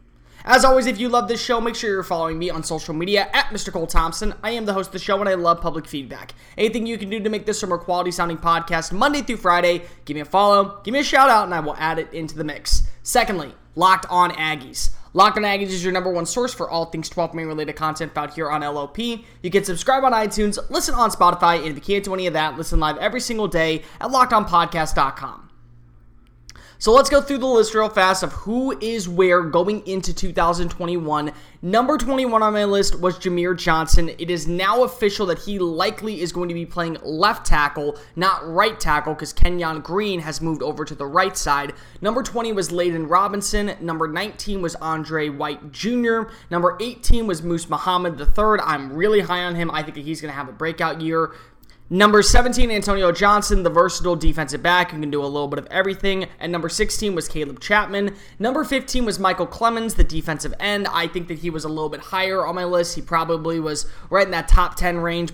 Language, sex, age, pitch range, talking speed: English, male, 20-39, 160-205 Hz, 220 wpm